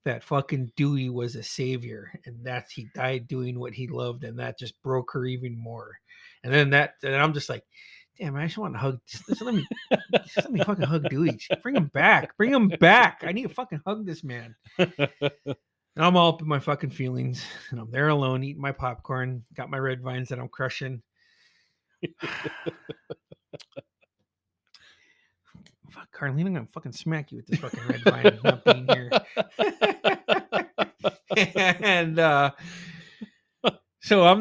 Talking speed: 175 wpm